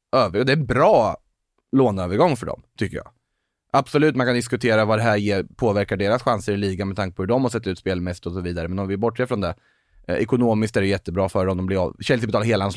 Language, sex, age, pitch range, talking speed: English, male, 20-39, 95-120 Hz, 250 wpm